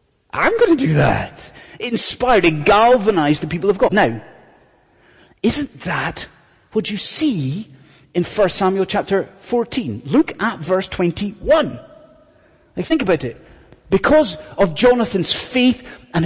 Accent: British